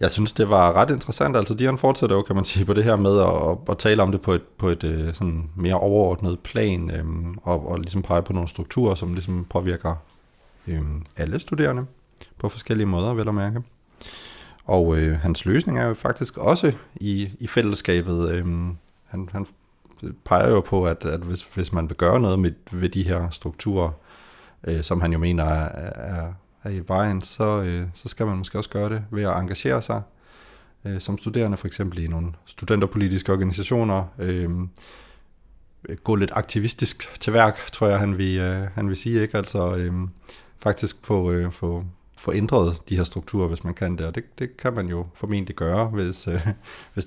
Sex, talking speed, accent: male, 190 wpm, native